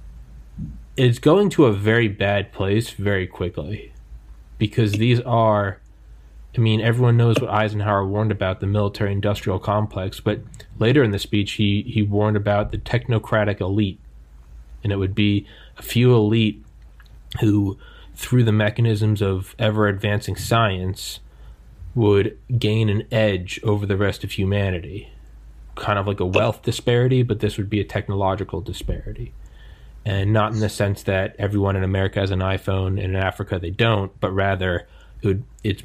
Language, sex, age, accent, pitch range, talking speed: English, male, 20-39, American, 90-105 Hz, 155 wpm